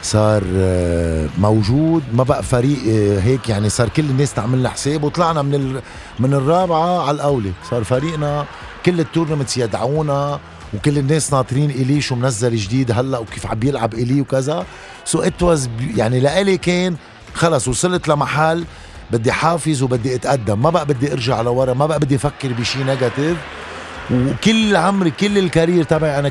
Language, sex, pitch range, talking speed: Arabic, male, 110-150 Hz, 155 wpm